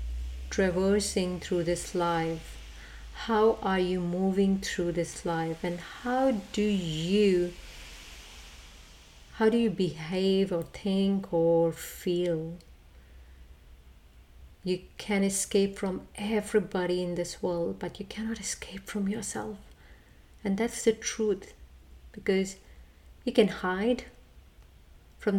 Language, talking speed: English, 110 wpm